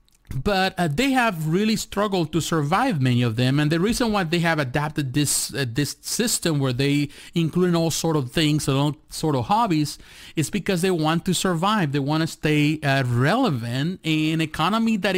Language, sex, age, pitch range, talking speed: English, male, 30-49, 145-190 Hz, 200 wpm